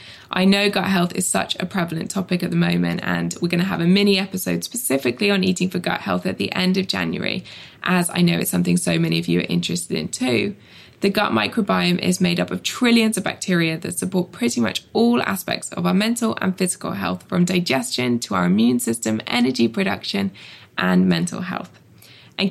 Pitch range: 120-195 Hz